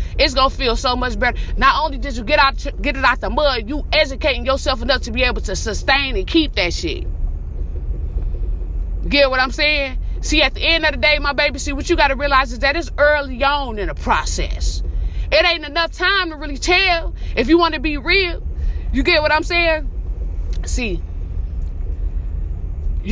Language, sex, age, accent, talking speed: English, female, 30-49, American, 200 wpm